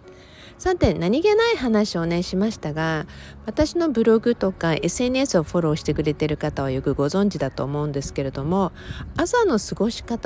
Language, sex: Japanese, female